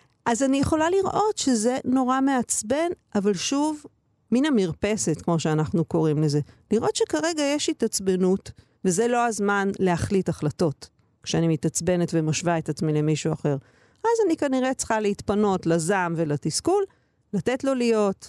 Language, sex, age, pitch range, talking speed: Hebrew, female, 50-69, 165-235 Hz, 135 wpm